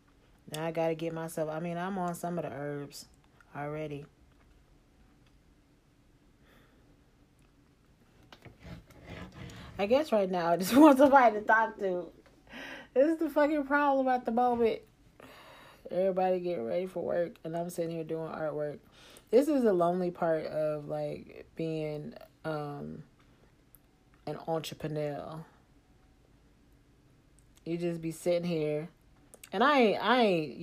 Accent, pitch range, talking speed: American, 150-205 Hz, 125 wpm